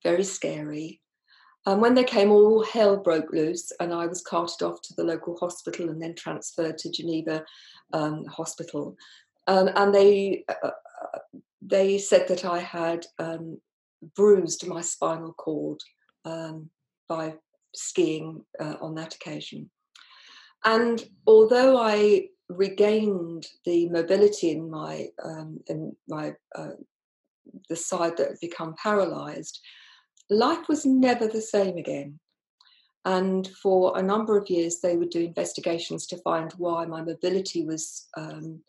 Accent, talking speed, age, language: British, 140 wpm, 50-69, English